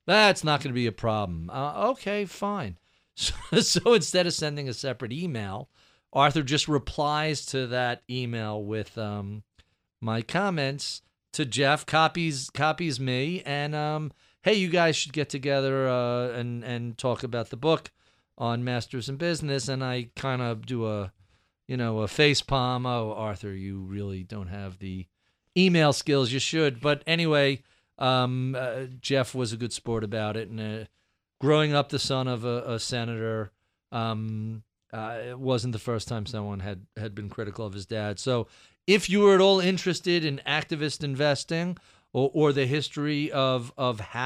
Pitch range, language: 115-150 Hz, English